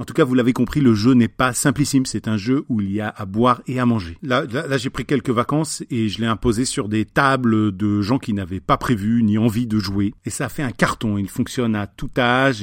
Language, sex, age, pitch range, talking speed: French, male, 40-59, 105-135 Hz, 275 wpm